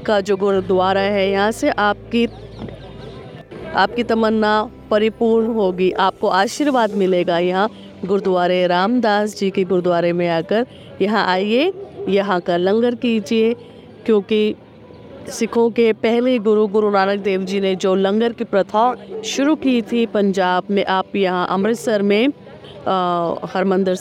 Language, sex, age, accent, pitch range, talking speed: Hindi, female, 20-39, native, 185-225 Hz, 130 wpm